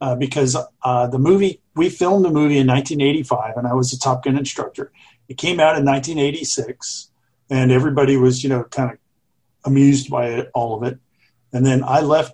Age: 50-69